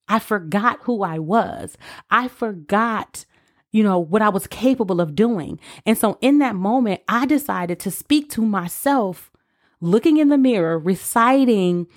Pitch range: 185-250 Hz